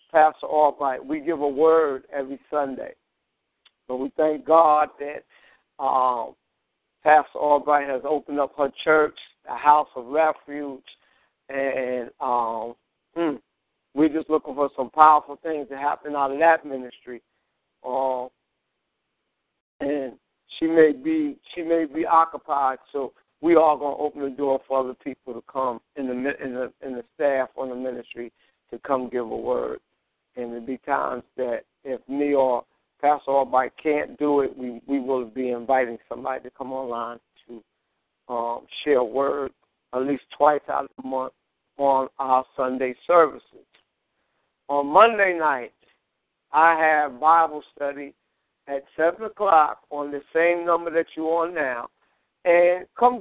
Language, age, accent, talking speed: English, 60-79, American, 155 wpm